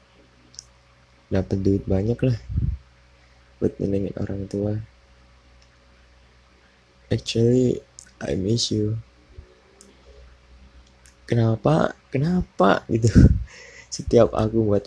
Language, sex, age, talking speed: Indonesian, male, 20-39, 75 wpm